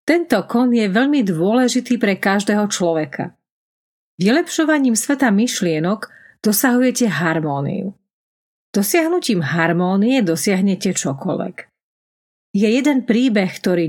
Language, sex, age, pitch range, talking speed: Slovak, female, 40-59, 180-240 Hz, 90 wpm